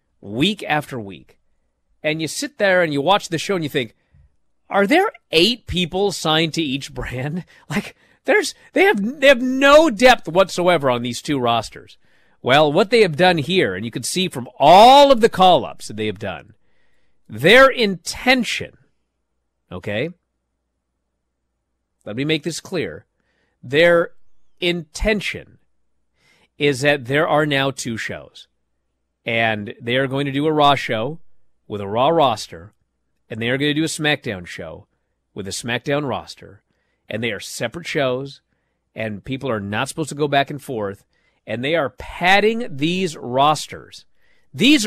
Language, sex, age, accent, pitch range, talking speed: English, male, 40-59, American, 115-185 Hz, 160 wpm